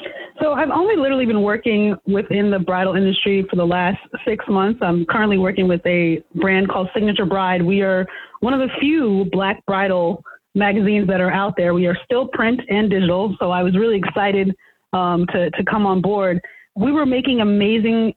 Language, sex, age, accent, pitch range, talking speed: English, female, 30-49, American, 190-235 Hz, 190 wpm